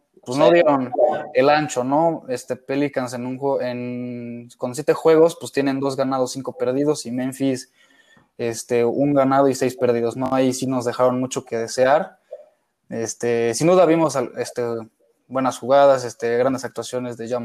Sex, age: male, 20-39